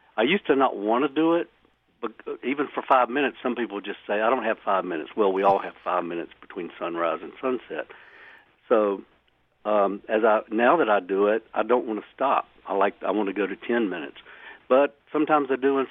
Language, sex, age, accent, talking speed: English, male, 60-79, American, 225 wpm